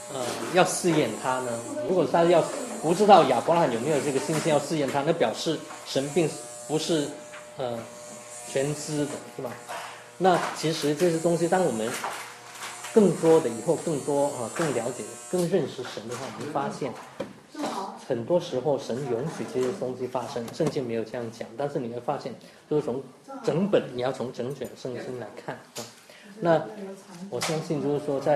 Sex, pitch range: male, 120-160 Hz